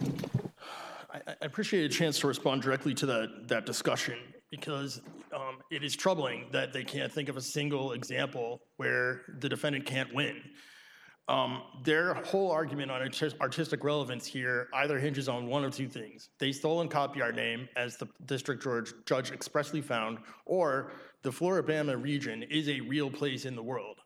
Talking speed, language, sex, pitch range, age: 165 wpm, English, male, 135-155 Hz, 30-49